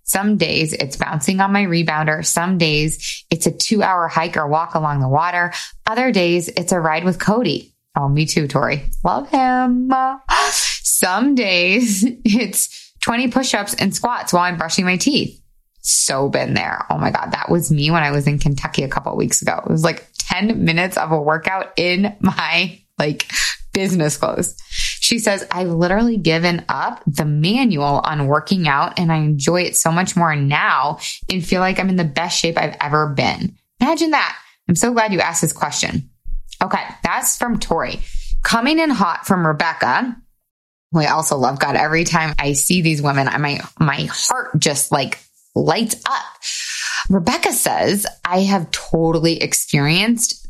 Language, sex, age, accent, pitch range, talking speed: English, female, 20-39, American, 155-205 Hz, 175 wpm